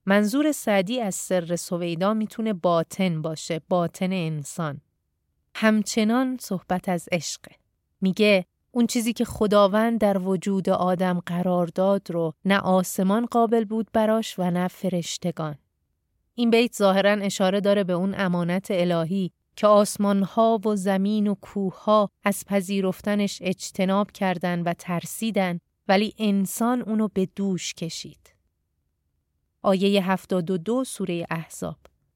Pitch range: 175-205 Hz